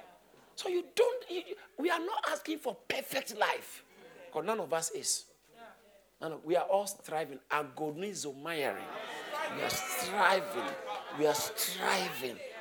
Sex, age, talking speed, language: male, 50-69, 130 wpm, English